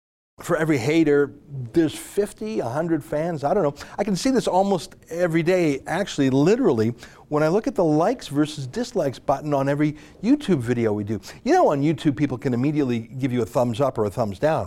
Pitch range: 120-160 Hz